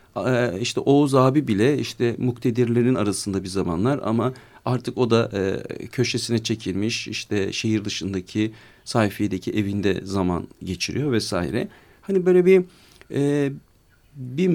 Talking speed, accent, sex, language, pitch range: 110 wpm, native, male, Turkish, 105-140 Hz